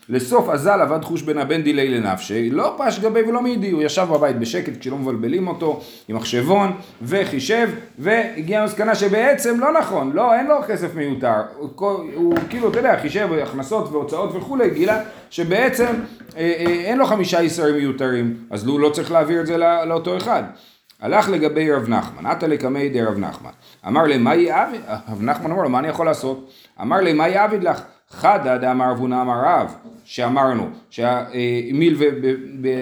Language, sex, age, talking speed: Hebrew, male, 40-59, 145 wpm